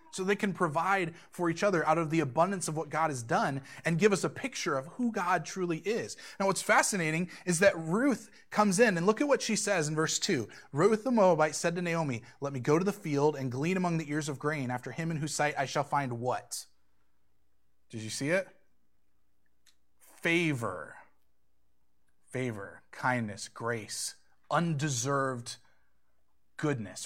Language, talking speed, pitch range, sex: English, 180 wpm, 130-205 Hz, male